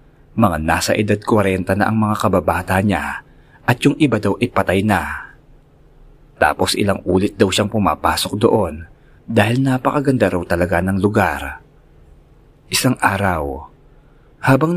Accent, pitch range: native, 95-130 Hz